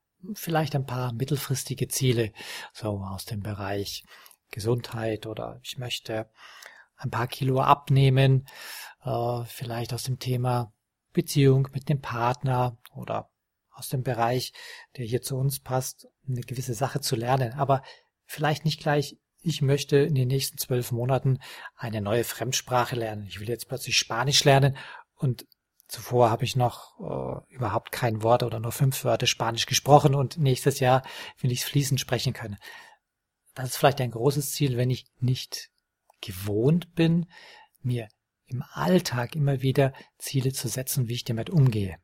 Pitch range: 120-140 Hz